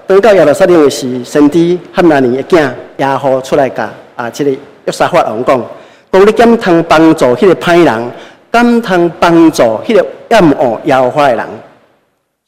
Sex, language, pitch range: male, Chinese, 130-170 Hz